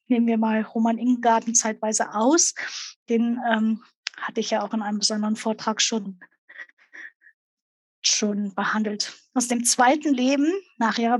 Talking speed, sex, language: 140 wpm, female, German